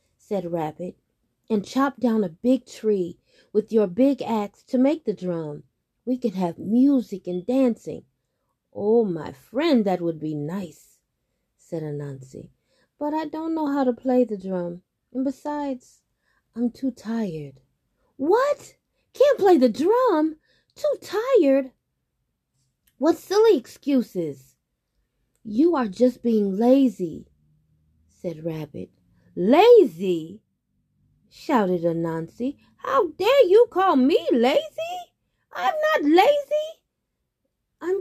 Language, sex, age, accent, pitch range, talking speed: English, female, 20-39, American, 170-275 Hz, 120 wpm